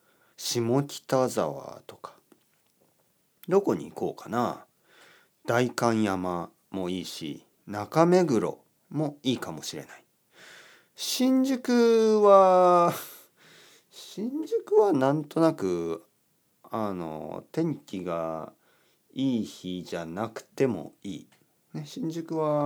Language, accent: Japanese, native